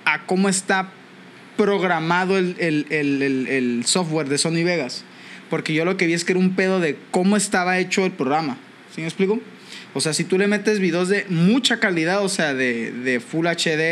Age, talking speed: 20-39, 205 wpm